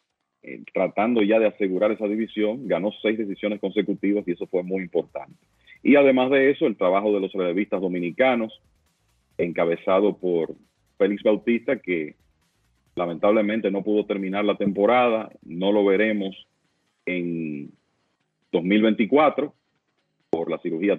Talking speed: 125 wpm